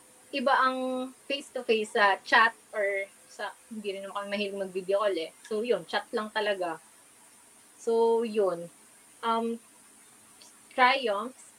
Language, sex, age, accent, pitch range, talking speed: Filipino, female, 20-39, native, 200-235 Hz, 110 wpm